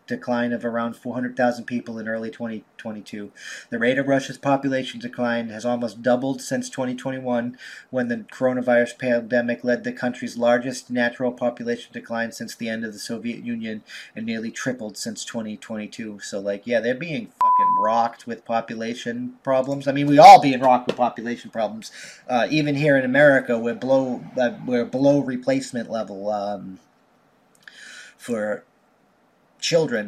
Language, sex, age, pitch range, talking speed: English, male, 30-49, 115-135 Hz, 150 wpm